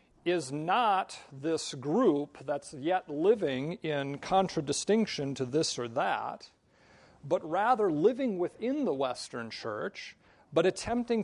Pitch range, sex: 145-185 Hz, male